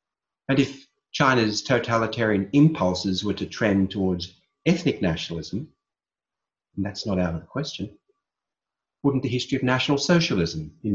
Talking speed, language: 135 wpm, English